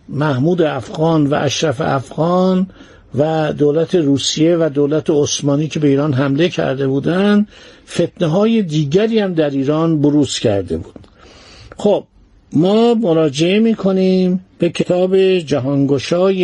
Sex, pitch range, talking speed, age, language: male, 145-190 Hz, 120 wpm, 60-79, Persian